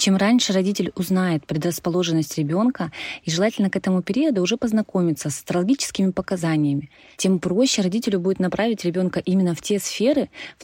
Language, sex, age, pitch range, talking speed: Russian, female, 20-39, 160-195 Hz, 150 wpm